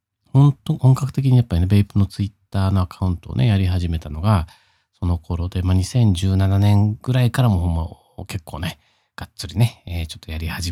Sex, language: male, Japanese